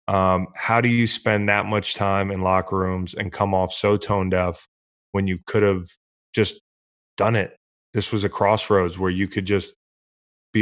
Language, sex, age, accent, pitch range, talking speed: English, male, 20-39, American, 95-110 Hz, 185 wpm